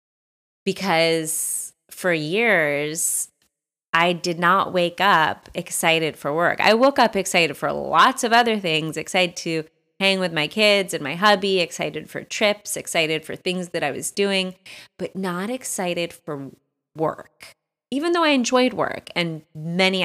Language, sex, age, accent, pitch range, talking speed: English, female, 20-39, American, 155-195 Hz, 155 wpm